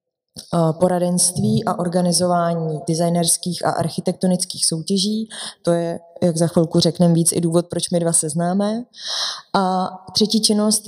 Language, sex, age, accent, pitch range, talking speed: Czech, female, 20-39, native, 175-190 Hz, 130 wpm